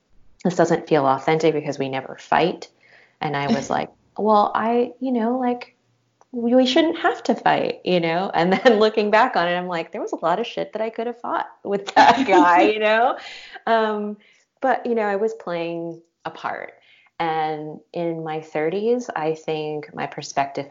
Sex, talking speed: female, 190 wpm